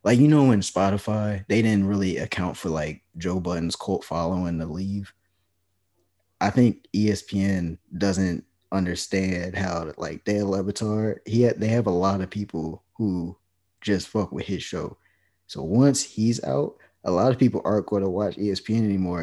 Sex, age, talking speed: male, 20-39, 170 wpm